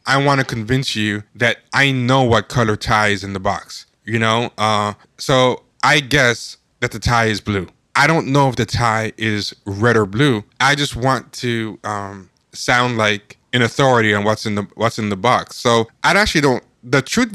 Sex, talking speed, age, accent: male, 205 wpm, 20-39, American